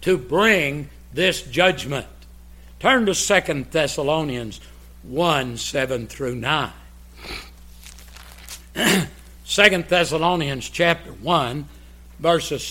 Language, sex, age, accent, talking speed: English, male, 60-79, American, 80 wpm